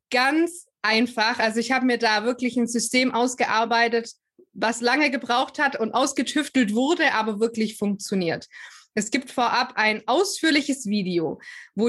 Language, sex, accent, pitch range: German, female, German, 215-255 Hz